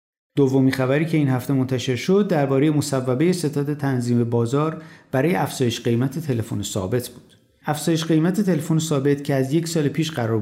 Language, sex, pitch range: Persian, male, 120-155 Hz